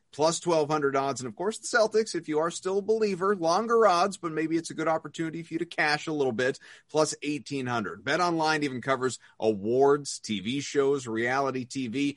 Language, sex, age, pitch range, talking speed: English, male, 30-49, 120-170 Hz, 195 wpm